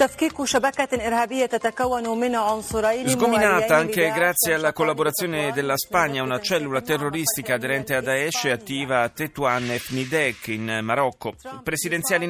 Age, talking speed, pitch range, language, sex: 40-59, 100 wpm, 130-170 Hz, Italian, male